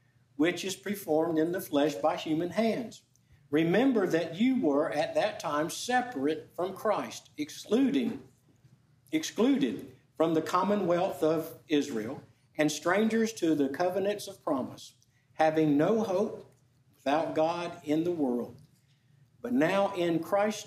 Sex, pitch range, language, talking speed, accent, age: male, 130-175 Hz, English, 130 wpm, American, 60-79